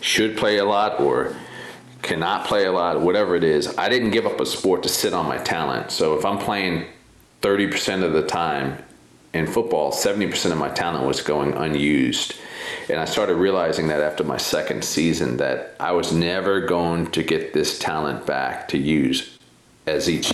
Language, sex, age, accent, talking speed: English, male, 40-59, American, 185 wpm